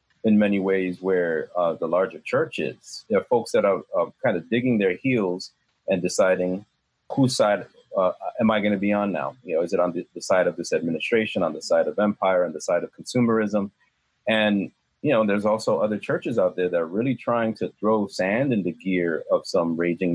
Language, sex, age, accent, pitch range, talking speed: English, male, 30-49, American, 90-110 Hz, 220 wpm